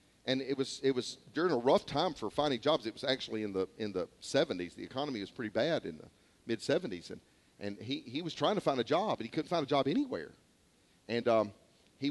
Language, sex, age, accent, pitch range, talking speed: English, male, 40-59, American, 135-210 Hz, 240 wpm